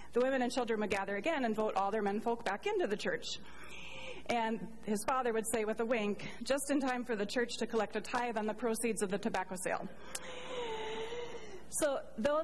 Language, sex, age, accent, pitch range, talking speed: English, female, 30-49, American, 180-225 Hz, 205 wpm